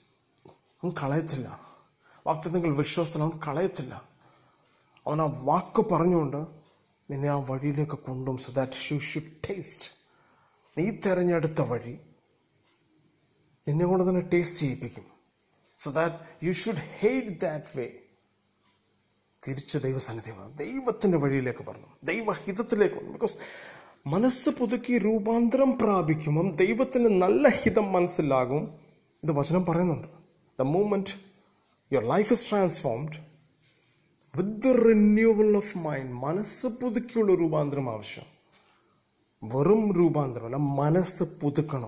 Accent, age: native, 30-49